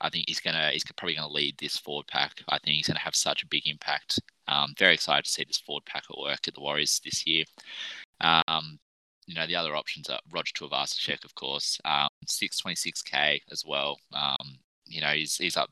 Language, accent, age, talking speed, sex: English, Australian, 20-39, 215 wpm, male